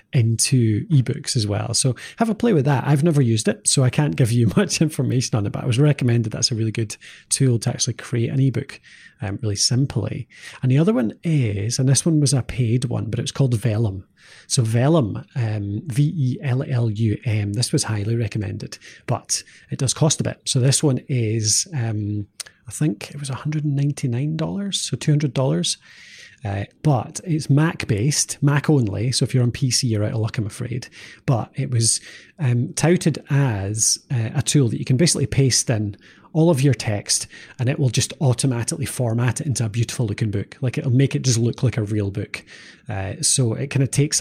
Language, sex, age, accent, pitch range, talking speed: English, male, 30-49, British, 115-140 Hz, 195 wpm